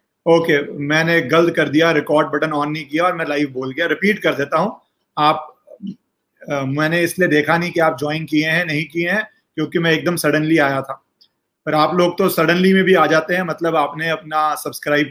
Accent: native